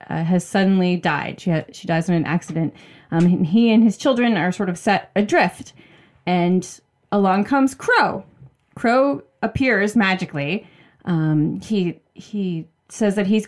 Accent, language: American, English